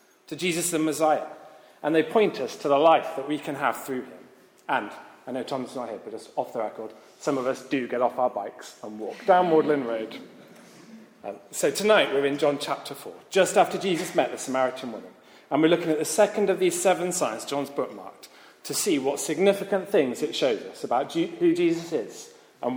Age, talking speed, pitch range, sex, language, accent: 40-59, 215 wpm, 145-180 Hz, male, English, British